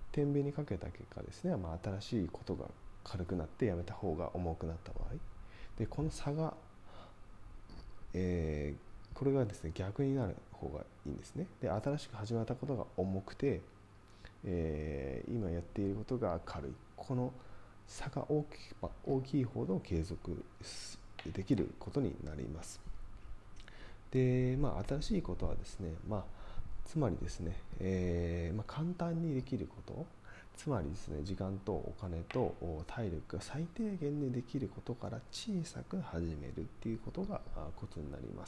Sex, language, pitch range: male, Japanese, 90-115 Hz